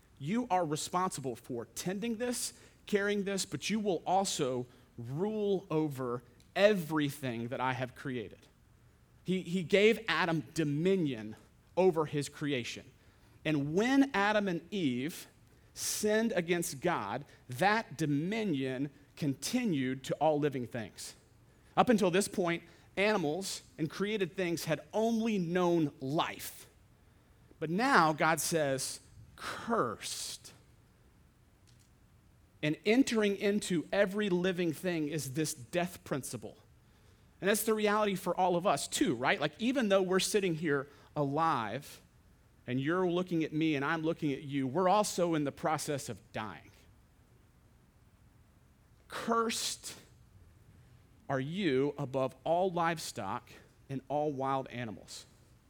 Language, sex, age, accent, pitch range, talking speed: English, male, 40-59, American, 130-190 Hz, 120 wpm